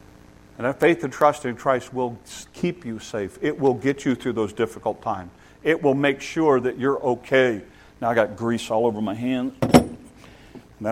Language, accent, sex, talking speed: English, American, male, 190 wpm